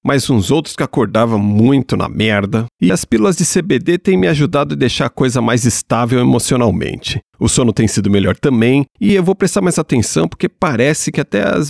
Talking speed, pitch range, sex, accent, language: 205 wpm, 110-185 Hz, male, Brazilian, Portuguese